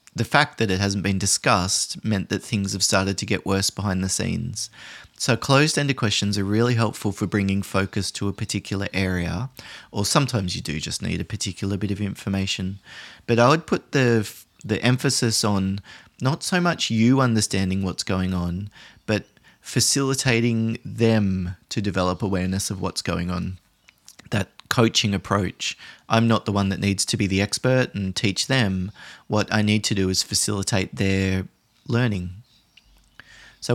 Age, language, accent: 30-49, English, Australian